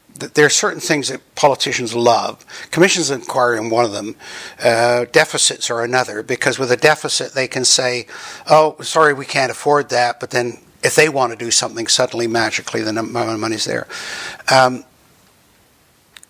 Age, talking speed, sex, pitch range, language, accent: 60-79, 175 wpm, male, 130-175 Hz, English, American